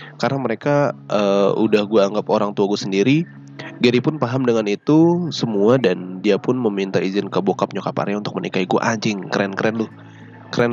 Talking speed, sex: 180 wpm, male